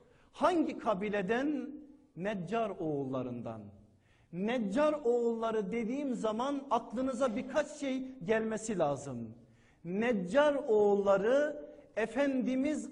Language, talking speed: Turkish, 75 wpm